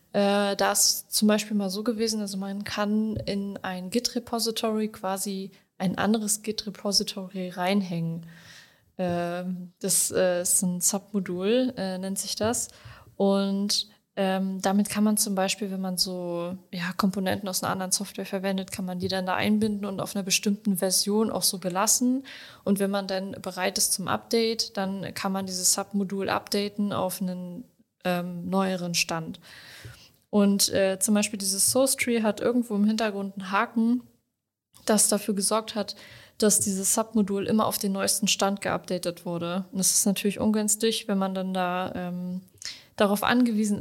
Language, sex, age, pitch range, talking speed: German, female, 20-39, 185-210 Hz, 155 wpm